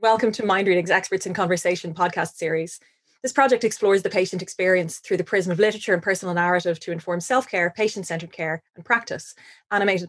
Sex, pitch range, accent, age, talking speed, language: female, 175-205 Hz, Irish, 20-39, 185 wpm, English